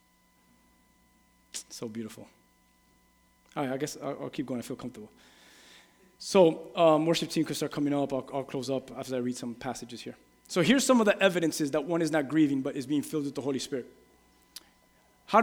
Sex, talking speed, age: male, 195 wpm, 20-39